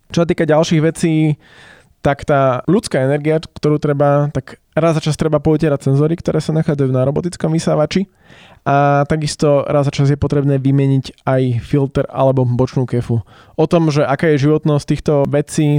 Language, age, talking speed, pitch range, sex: Slovak, 20-39, 170 wpm, 125-145 Hz, male